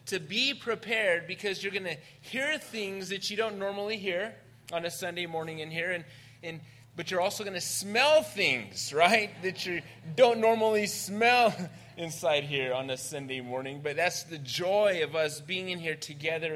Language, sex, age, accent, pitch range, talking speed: English, male, 20-39, American, 130-200 Hz, 180 wpm